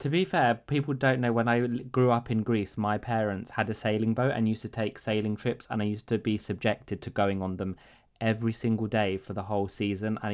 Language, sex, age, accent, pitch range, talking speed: Greek, male, 20-39, British, 105-125 Hz, 245 wpm